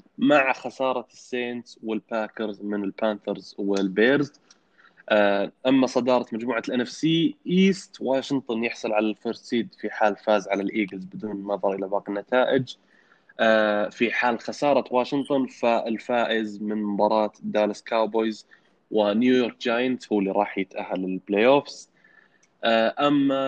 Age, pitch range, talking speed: 20-39, 105-120 Hz, 120 wpm